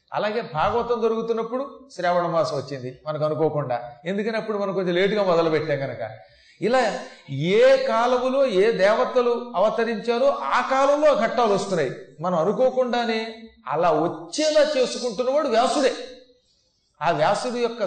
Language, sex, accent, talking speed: Telugu, male, native, 120 wpm